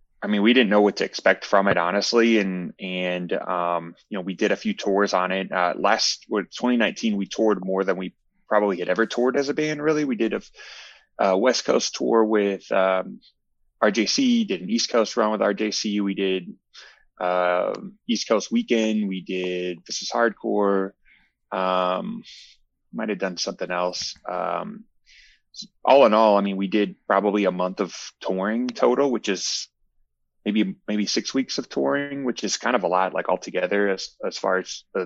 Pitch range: 90-110 Hz